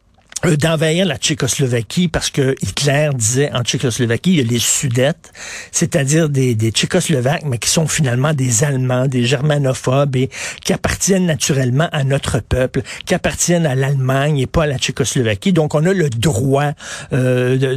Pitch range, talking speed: 130-160 Hz, 165 wpm